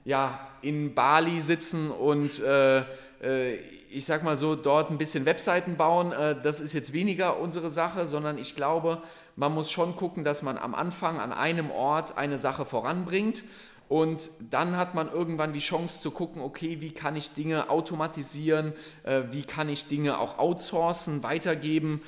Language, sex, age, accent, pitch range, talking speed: German, male, 30-49, German, 140-160 Hz, 170 wpm